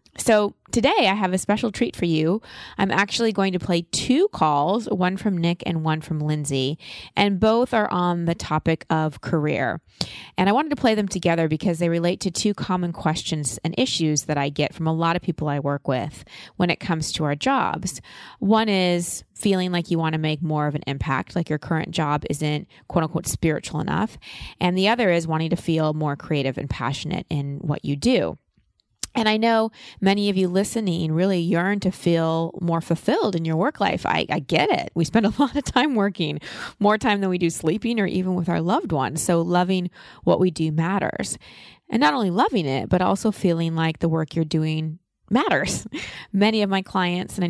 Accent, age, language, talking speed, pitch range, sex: American, 20-39, English, 210 wpm, 160-195 Hz, female